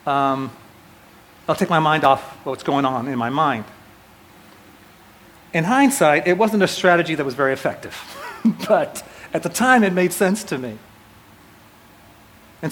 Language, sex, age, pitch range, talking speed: English, male, 40-59, 150-200 Hz, 150 wpm